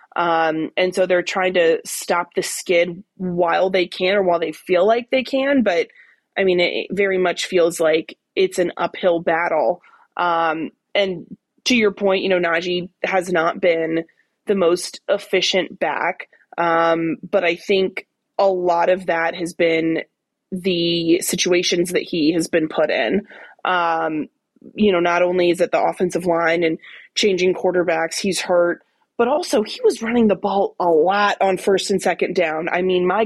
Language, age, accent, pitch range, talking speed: English, 20-39, American, 175-220 Hz, 175 wpm